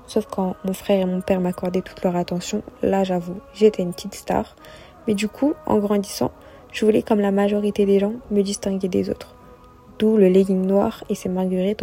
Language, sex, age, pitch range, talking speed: French, female, 20-39, 185-220 Hz, 205 wpm